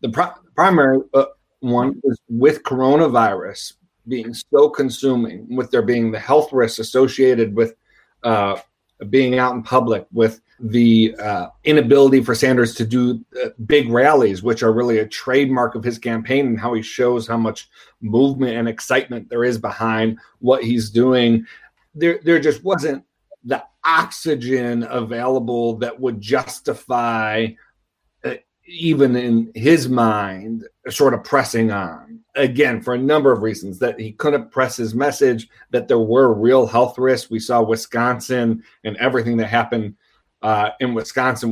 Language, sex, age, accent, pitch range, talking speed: English, male, 40-59, American, 115-130 Hz, 145 wpm